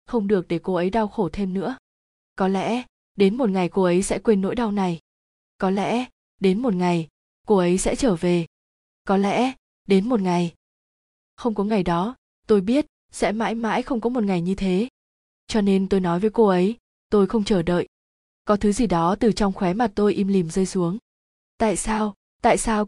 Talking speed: 205 wpm